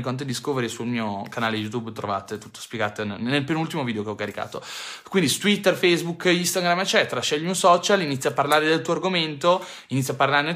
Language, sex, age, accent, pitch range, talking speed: Italian, male, 20-39, native, 120-170 Hz, 190 wpm